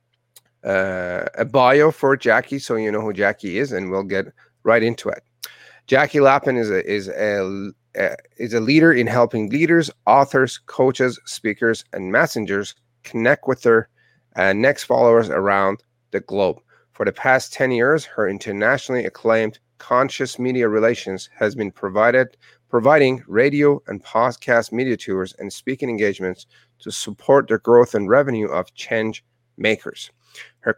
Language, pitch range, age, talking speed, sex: English, 110-135 Hz, 30-49, 150 wpm, male